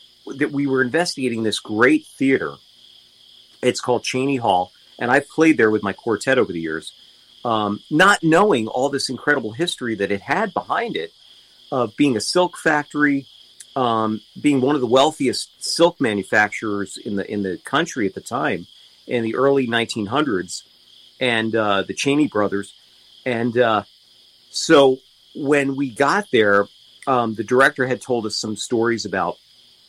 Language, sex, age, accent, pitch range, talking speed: English, male, 40-59, American, 105-140 Hz, 160 wpm